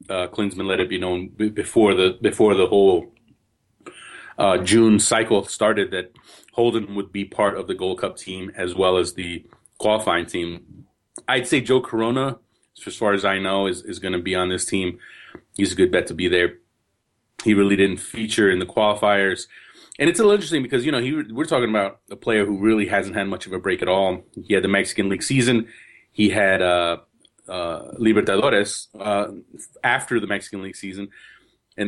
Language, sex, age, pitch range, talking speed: English, male, 30-49, 95-120 Hz, 195 wpm